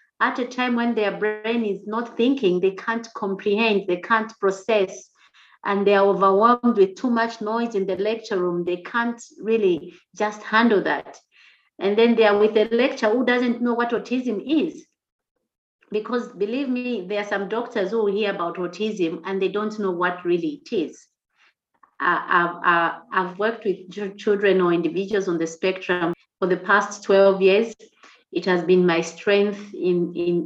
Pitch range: 185-220 Hz